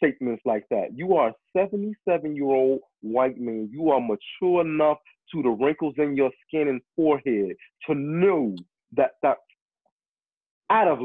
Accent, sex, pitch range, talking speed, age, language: American, male, 130-175 Hz, 145 wpm, 30-49, English